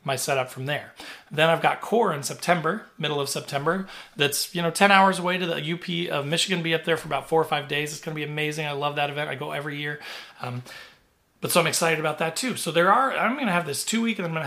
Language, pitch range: English, 145-175 Hz